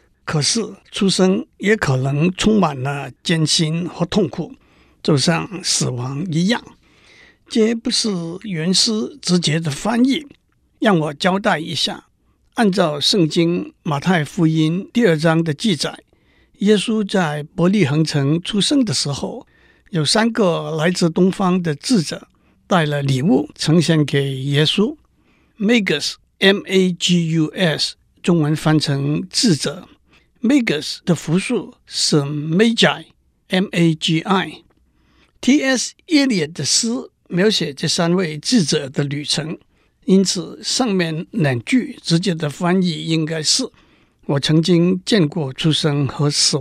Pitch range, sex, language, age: 155-205 Hz, male, Chinese, 60-79